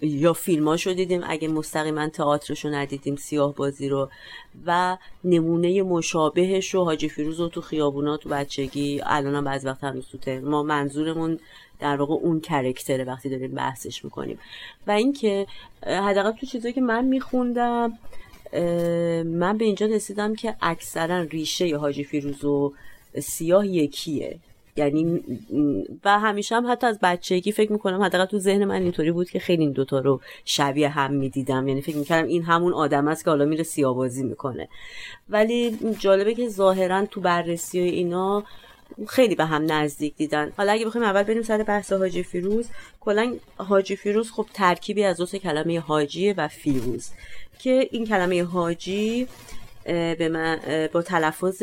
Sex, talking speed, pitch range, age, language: female, 150 wpm, 150-200 Hz, 30-49, Persian